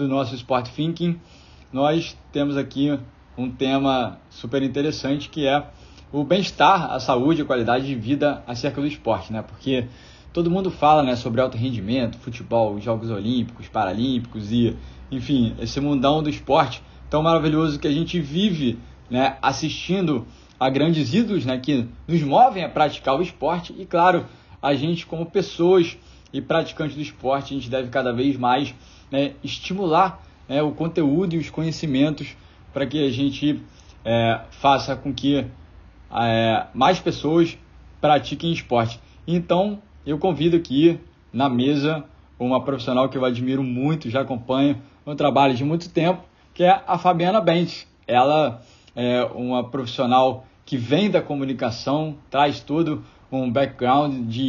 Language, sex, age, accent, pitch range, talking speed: Portuguese, male, 20-39, Brazilian, 125-155 Hz, 150 wpm